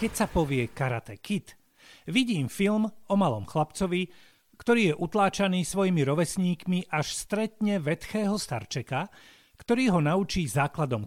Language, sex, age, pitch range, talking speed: Slovak, male, 40-59, 155-200 Hz, 125 wpm